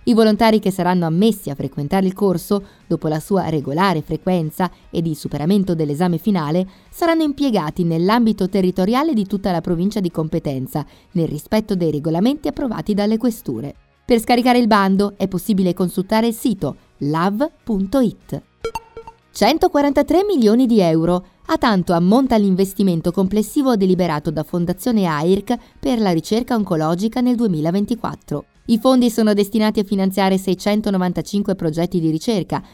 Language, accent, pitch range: Italian, native, 170-225 Hz